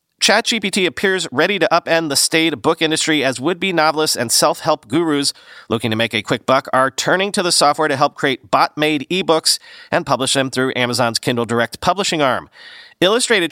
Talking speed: 180 wpm